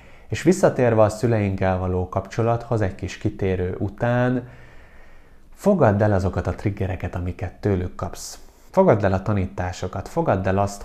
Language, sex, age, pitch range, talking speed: Hungarian, male, 30-49, 95-115 Hz, 140 wpm